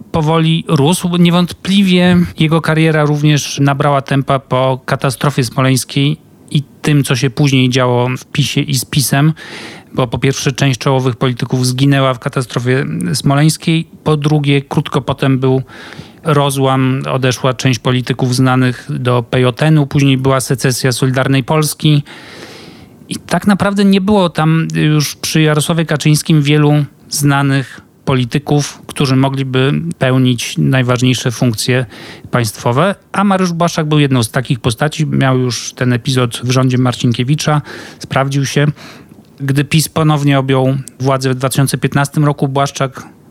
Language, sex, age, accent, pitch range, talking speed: Polish, male, 40-59, native, 130-150 Hz, 130 wpm